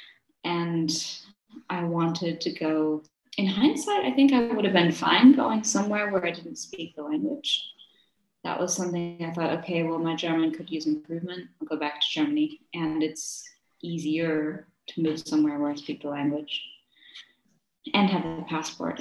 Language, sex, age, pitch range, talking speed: English, female, 20-39, 165-270 Hz, 170 wpm